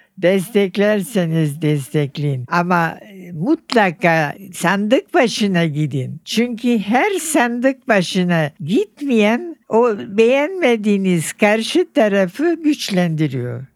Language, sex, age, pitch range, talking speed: Turkish, female, 60-79, 185-235 Hz, 75 wpm